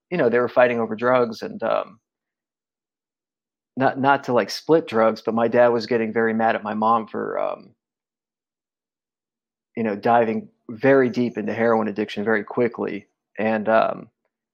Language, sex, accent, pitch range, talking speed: English, male, American, 110-130 Hz, 160 wpm